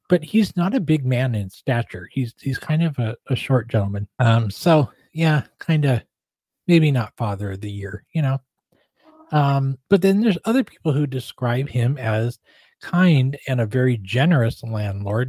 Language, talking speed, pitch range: English, 175 wpm, 115-155 Hz